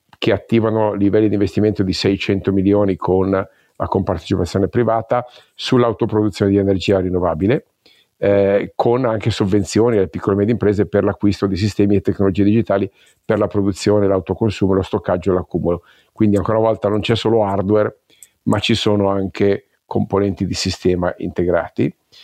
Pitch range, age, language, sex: 95-110 Hz, 50-69, Italian, male